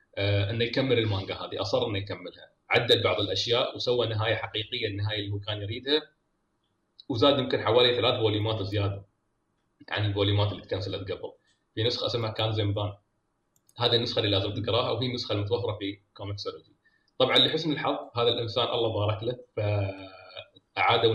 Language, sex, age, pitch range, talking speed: Arabic, male, 30-49, 105-135 Hz, 150 wpm